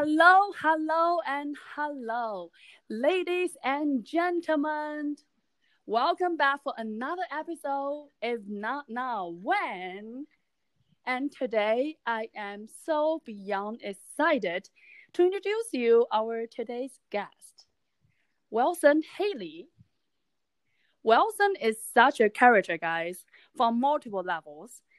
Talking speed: 95 wpm